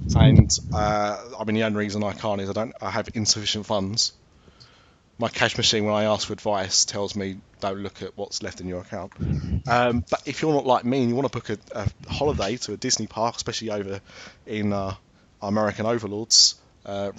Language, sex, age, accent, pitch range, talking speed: English, male, 20-39, British, 105-135 Hz, 210 wpm